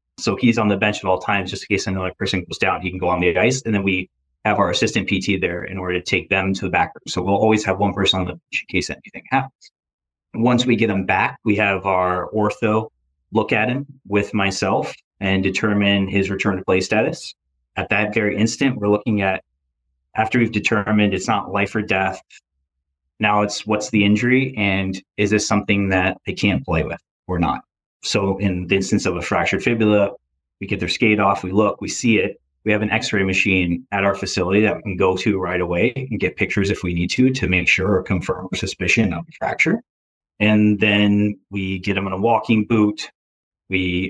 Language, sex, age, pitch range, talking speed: English, male, 20-39, 95-110 Hz, 220 wpm